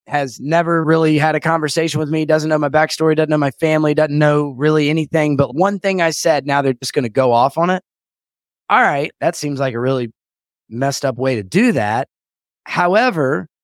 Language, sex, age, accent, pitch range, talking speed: English, male, 30-49, American, 125-170 Hz, 210 wpm